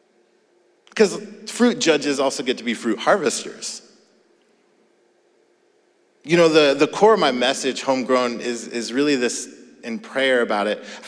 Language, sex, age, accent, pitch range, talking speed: English, male, 30-49, American, 125-190 Hz, 145 wpm